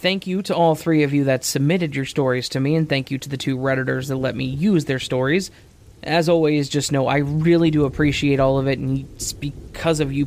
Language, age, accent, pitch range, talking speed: English, 20-39, American, 135-160 Hz, 245 wpm